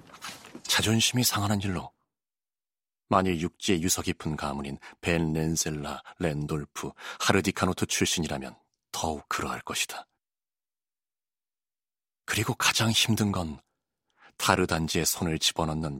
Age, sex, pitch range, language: 30-49, male, 80-105 Hz, Korean